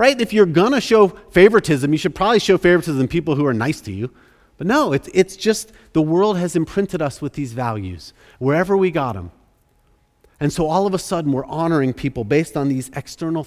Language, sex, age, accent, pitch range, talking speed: English, male, 40-59, American, 115-175 Hz, 220 wpm